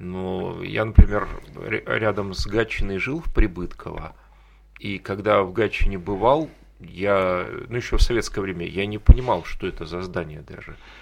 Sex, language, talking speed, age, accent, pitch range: male, Russian, 150 wpm, 30-49, native, 90-105 Hz